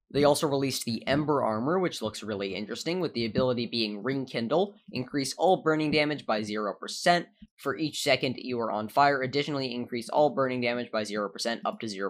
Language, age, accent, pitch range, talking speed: English, 10-29, American, 110-150 Hz, 185 wpm